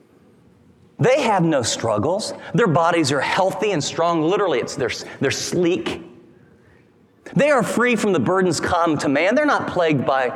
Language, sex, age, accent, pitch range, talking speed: English, male, 40-59, American, 170-220 Hz, 155 wpm